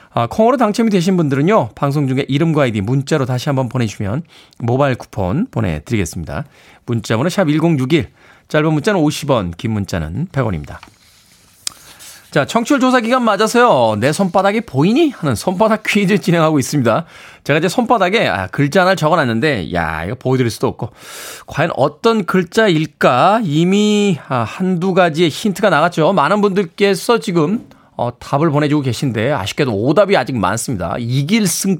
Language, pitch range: Korean, 130-200 Hz